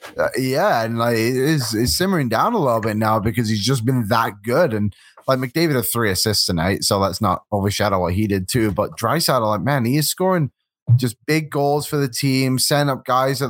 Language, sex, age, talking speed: English, male, 20-39, 225 wpm